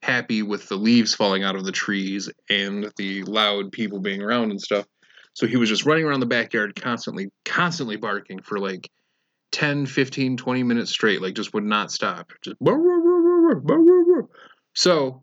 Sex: male